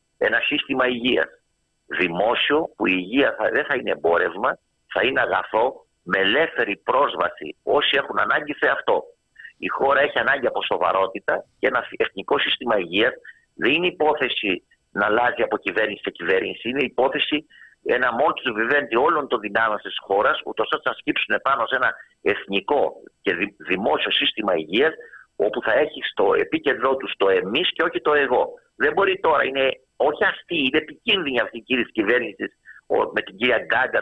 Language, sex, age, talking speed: Greek, male, 50-69, 165 wpm